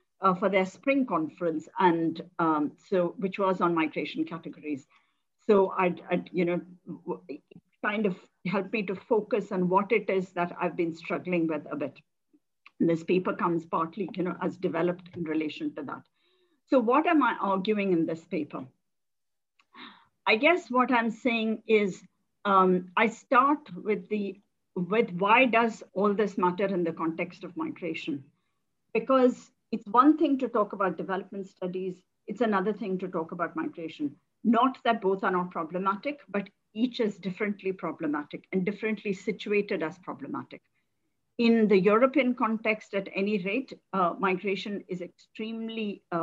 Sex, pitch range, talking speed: female, 175-220 Hz, 155 wpm